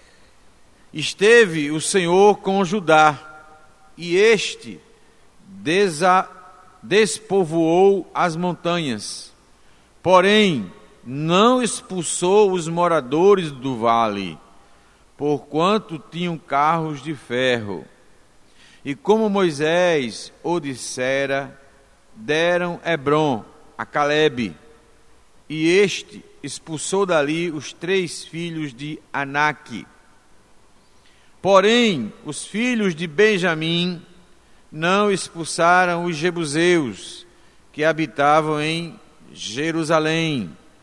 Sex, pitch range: male, 145-185 Hz